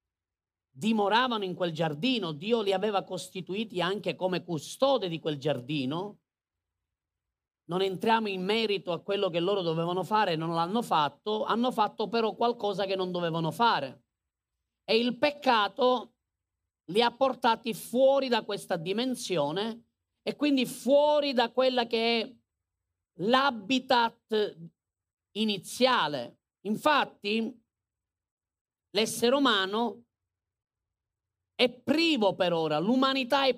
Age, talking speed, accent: 40-59, 115 wpm, native